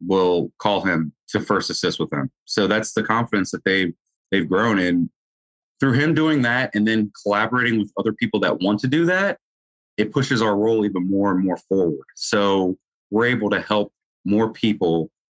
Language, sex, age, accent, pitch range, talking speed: English, male, 30-49, American, 100-115 Hz, 190 wpm